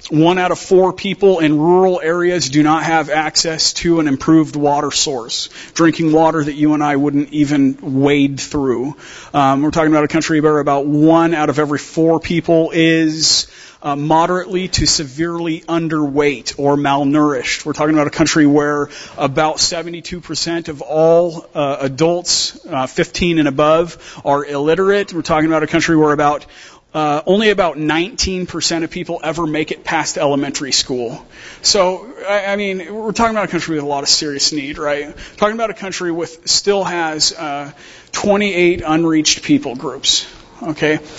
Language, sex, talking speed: English, male, 170 wpm